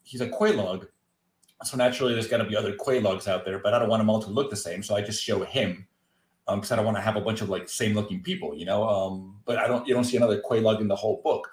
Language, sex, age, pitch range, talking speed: English, male, 30-49, 105-120 Hz, 285 wpm